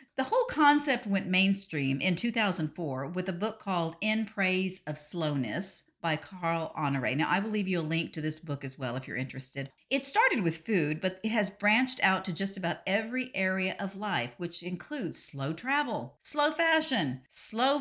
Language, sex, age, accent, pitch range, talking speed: English, female, 50-69, American, 170-250 Hz, 190 wpm